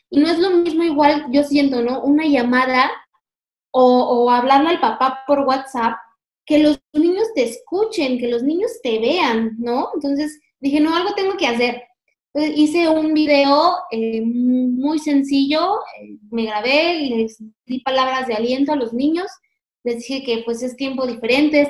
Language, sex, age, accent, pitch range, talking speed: Spanish, female, 20-39, Mexican, 240-300 Hz, 170 wpm